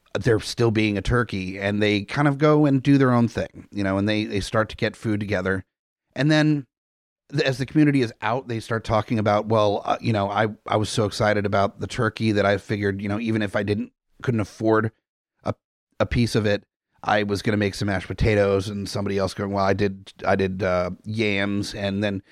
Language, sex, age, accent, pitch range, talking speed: English, male, 30-49, American, 105-125 Hz, 230 wpm